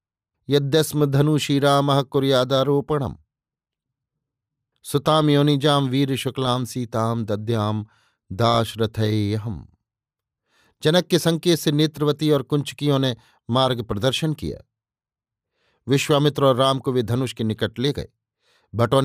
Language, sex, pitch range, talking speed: Hindi, male, 120-145 Hz, 105 wpm